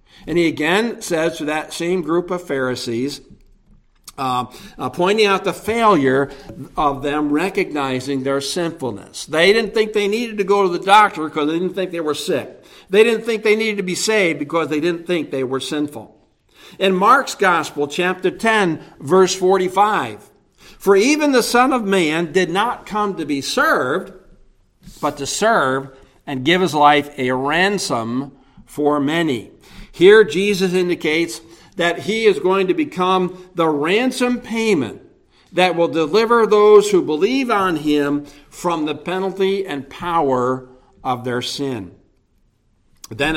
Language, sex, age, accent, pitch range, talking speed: English, male, 60-79, American, 145-195 Hz, 155 wpm